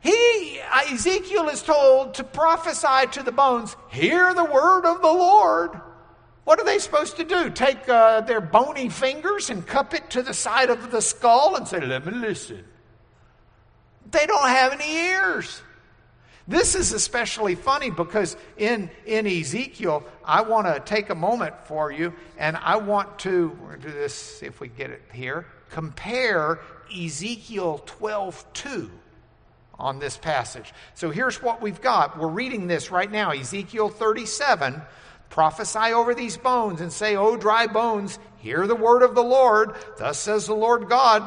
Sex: male